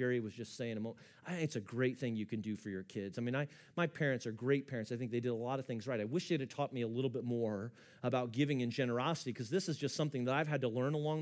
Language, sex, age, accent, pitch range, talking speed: English, male, 40-59, American, 125-160 Hz, 300 wpm